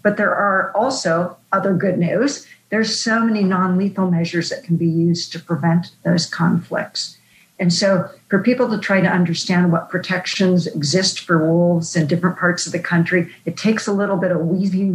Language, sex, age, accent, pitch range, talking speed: English, female, 50-69, American, 170-190 Hz, 185 wpm